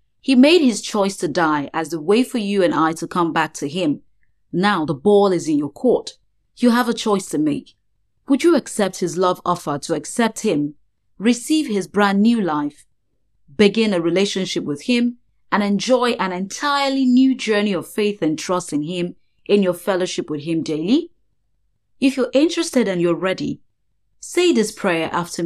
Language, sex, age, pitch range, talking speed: English, female, 30-49, 160-225 Hz, 185 wpm